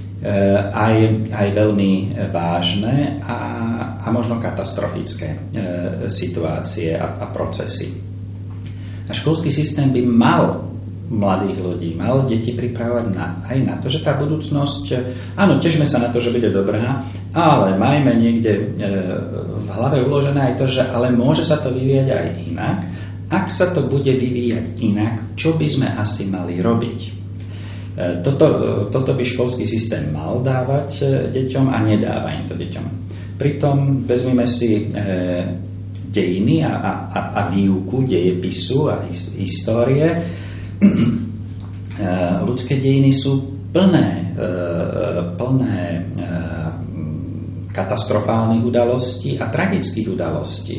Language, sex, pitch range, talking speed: Slovak, male, 95-125 Hz, 120 wpm